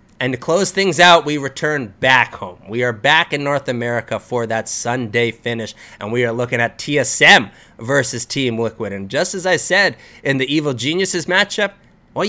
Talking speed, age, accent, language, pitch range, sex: 190 wpm, 30-49, American, English, 115-155 Hz, male